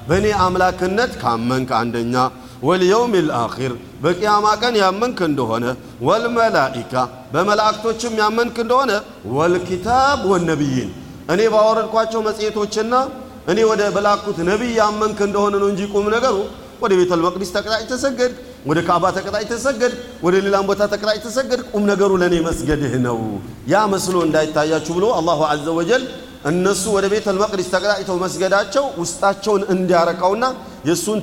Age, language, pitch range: 40-59, Amharic, 165-210 Hz